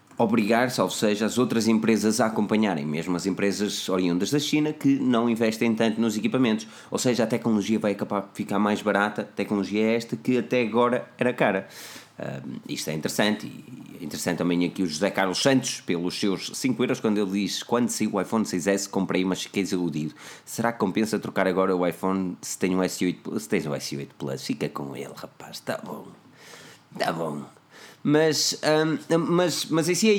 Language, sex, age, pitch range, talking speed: Portuguese, male, 20-39, 95-120 Hz, 185 wpm